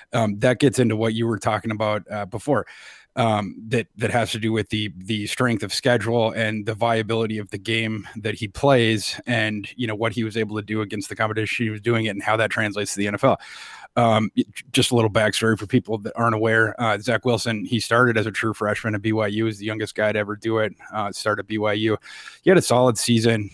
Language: English